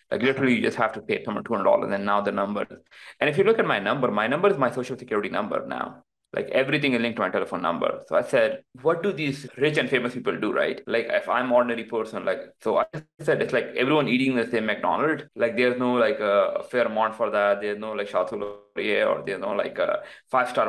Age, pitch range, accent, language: 20-39, 105-140 Hz, Indian, English